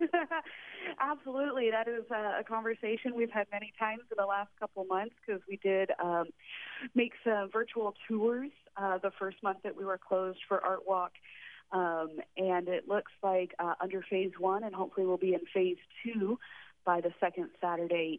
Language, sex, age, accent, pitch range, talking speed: English, female, 30-49, American, 170-225 Hz, 180 wpm